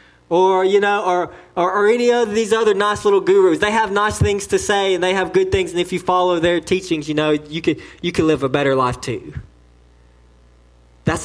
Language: English